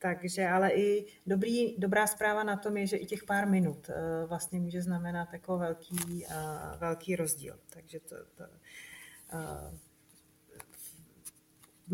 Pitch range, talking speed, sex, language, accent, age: 170-190 Hz, 135 wpm, female, Czech, native, 30-49